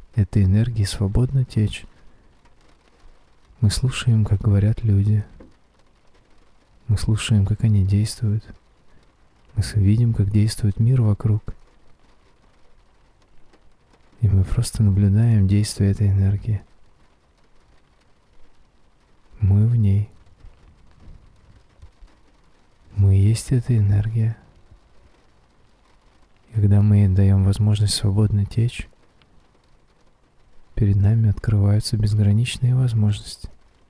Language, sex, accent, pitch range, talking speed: Russian, male, native, 95-110 Hz, 80 wpm